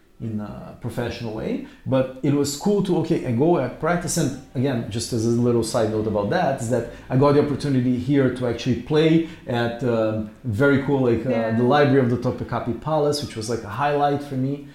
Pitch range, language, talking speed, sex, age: 115-145 Hz, English, 215 wpm, male, 40-59